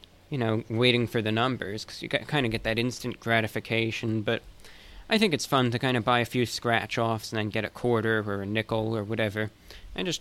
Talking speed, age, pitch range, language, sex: 225 wpm, 20-39, 110-125 Hz, English, male